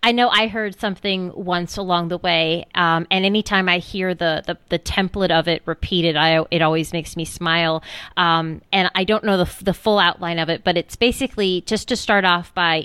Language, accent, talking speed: English, American, 215 wpm